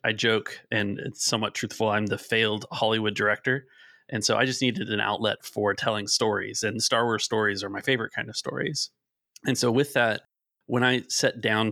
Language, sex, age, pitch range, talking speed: English, male, 30-49, 105-125 Hz, 200 wpm